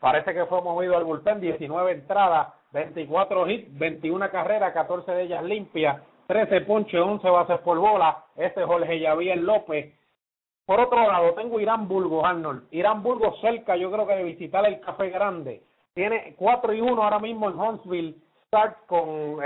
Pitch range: 170-210 Hz